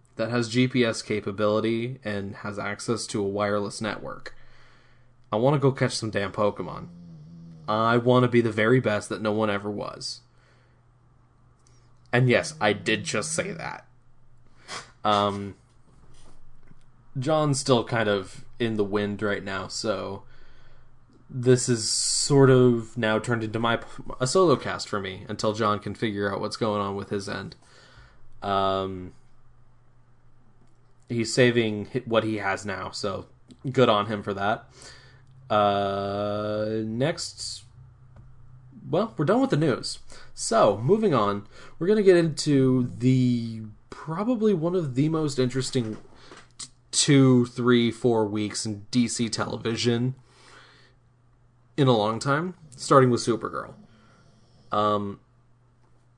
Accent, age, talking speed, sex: American, 20-39, 130 wpm, male